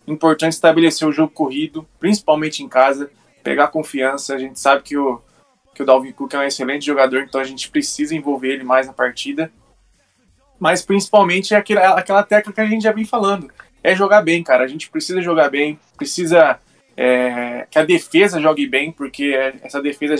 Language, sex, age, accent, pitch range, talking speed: Portuguese, male, 20-39, Brazilian, 135-165 Hz, 185 wpm